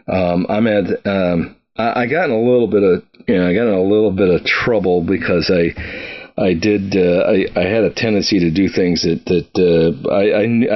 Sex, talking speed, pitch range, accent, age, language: male, 210 wpm, 85-100 Hz, American, 40-59, English